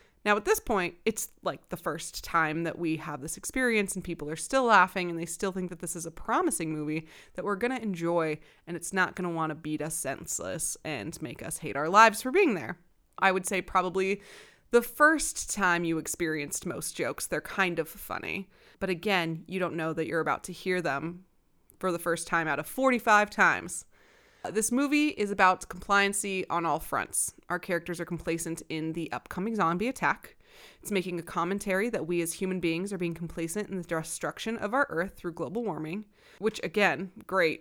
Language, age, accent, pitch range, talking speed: English, 20-39, American, 170-215 Hz, 205 wpm